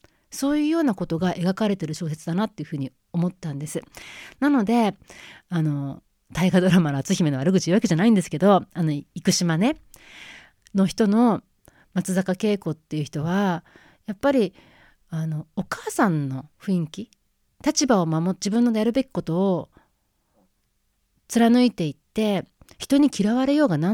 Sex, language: female, Japanese